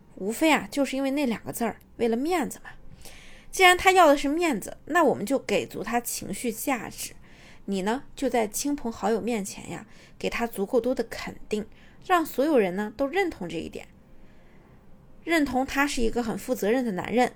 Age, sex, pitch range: 20-39, female, 215-290 Hz